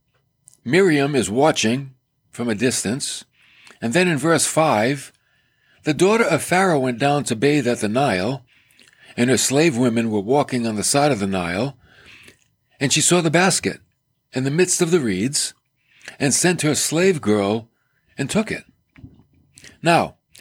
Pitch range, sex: 120-155 Hz, male